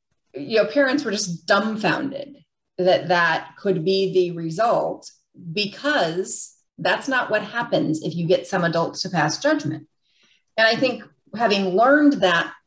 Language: English